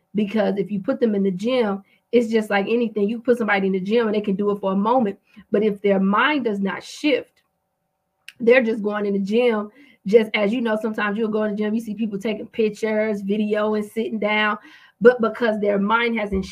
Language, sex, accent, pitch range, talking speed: English, female, American, 195-225 Hz, 230 wpm